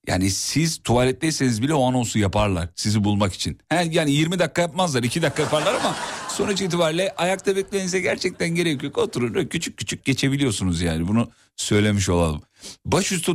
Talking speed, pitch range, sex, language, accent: 155 wpm, 100-165 Hz, male, Turkish, native